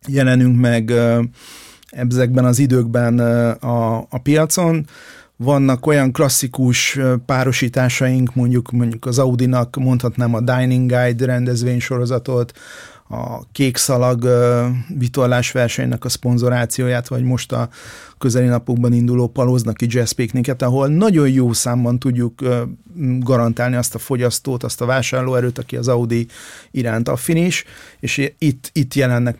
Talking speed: 120 wpm